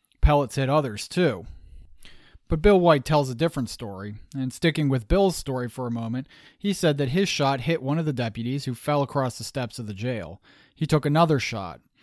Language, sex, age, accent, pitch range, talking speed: English, male, 30-49, American, 120-150 Hz, 205 wpm